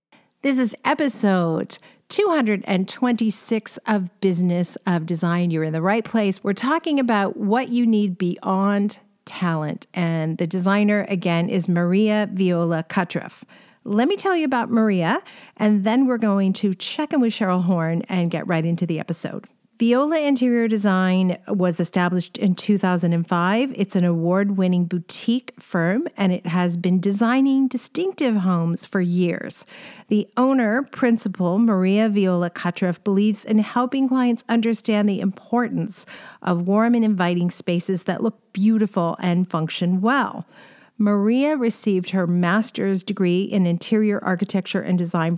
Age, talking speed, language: 40-59, 140 wpm, English